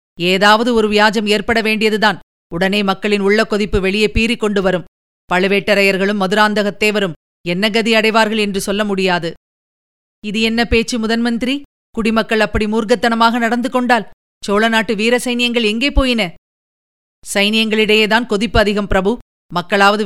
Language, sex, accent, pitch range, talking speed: Tamil, female, native, 200-230 Hz, 115 wpm